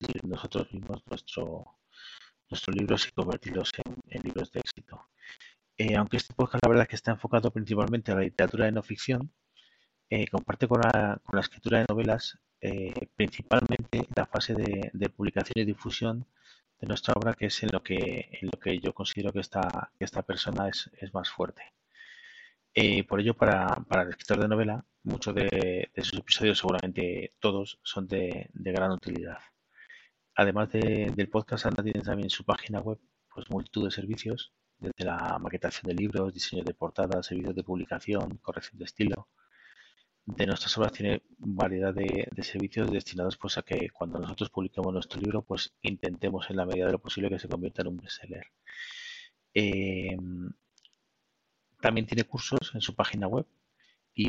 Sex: male